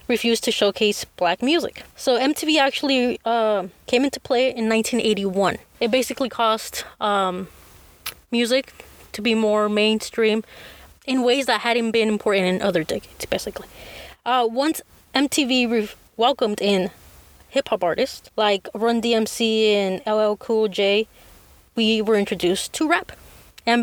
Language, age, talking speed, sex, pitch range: English, 20-39, 135 wpm, female, 215-255 Hz